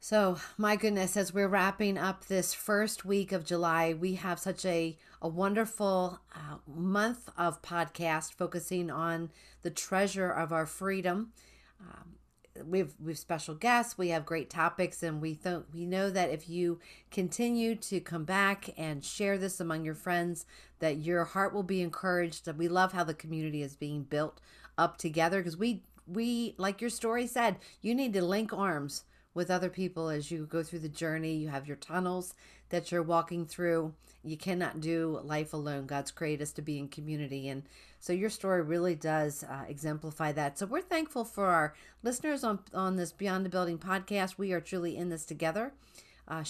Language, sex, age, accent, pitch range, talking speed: English, female, 40-59, American, 160-200 Hz, 185 wpm